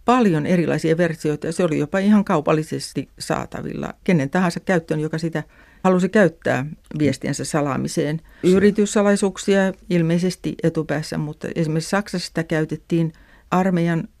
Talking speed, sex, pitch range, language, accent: 115 wpm, female, 145-180 Hz, Finnish, native